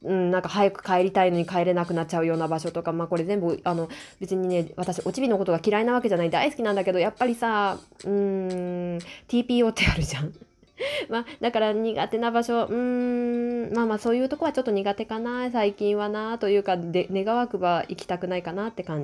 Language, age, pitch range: Japanese, 20-39, 180-250 Hz